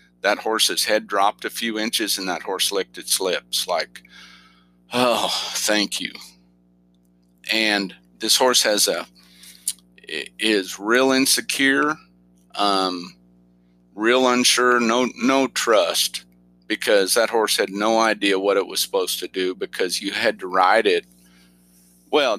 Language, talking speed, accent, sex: English, 135 wpm, American, male